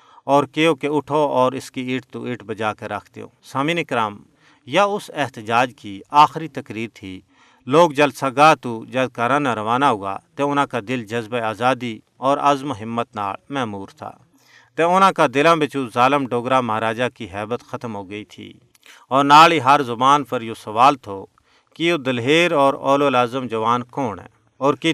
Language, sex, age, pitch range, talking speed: Urdu, male, 40-59, 115-145 Hz, 185 wpm